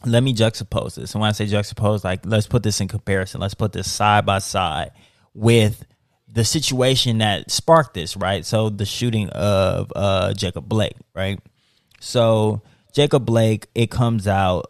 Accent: American